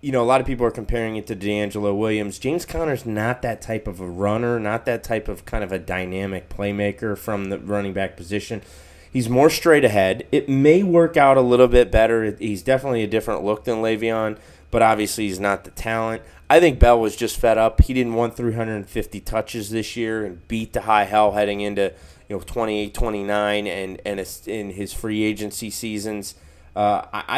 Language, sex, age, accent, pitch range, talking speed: English, male, 20-39, American, 100-115 Hz, 200 wpm